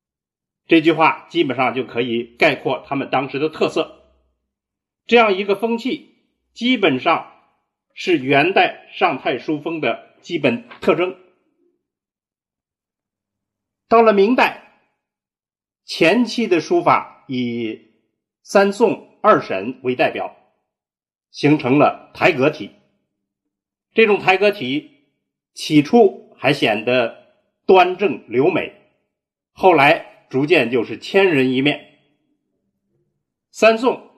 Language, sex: Chinese, male